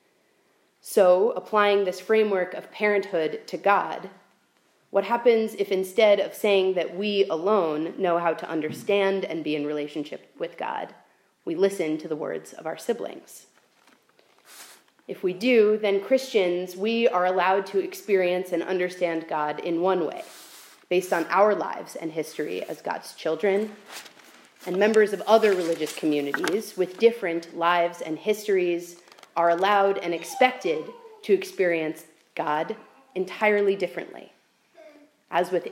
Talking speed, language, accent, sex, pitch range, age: 140 wpm, English, American, female, 170-210 Hz, 30-49